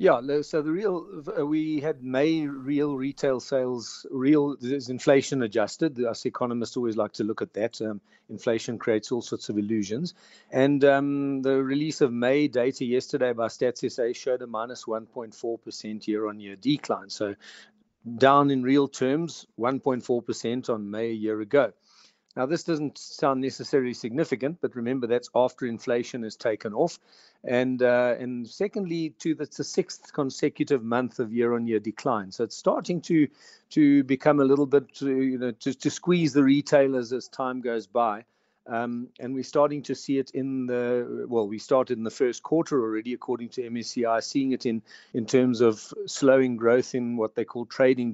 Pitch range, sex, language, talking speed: 115-140 Hz, male, English, 170 wpm